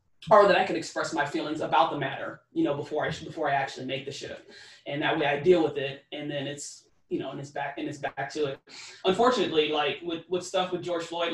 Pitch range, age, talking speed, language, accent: 145-190 Hz, 20-39, 255 wpm, English, American